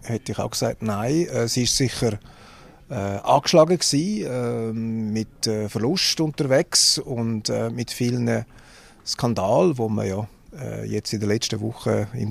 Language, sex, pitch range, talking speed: German, male, 115-150 Hz, 150 wpm